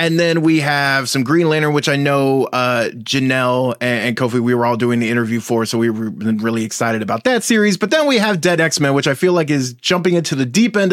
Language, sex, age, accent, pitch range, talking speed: English, male, 20-39, American, 115-160 Hz, 255 wpm